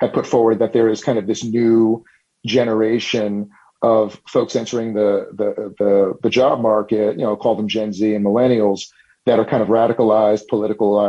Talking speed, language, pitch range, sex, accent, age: 185 wpm, English, 105-115 Hz, male, American, 40-59